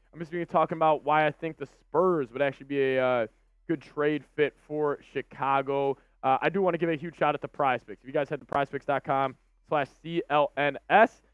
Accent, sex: American, male